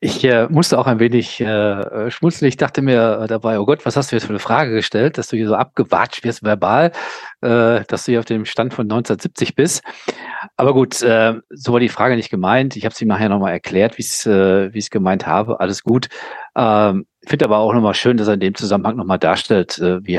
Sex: male